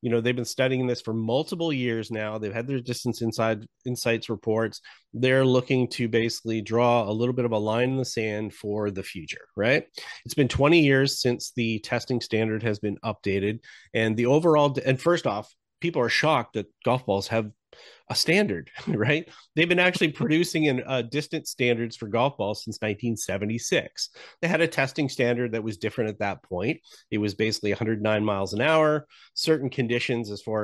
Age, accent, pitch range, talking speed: 30-49, American, 110-135 Hz, 190 wpm